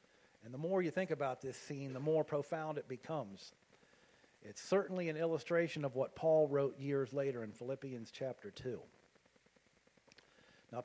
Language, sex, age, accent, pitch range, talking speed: English, male, 50-69, American, 130-160 Hz, 155 wpm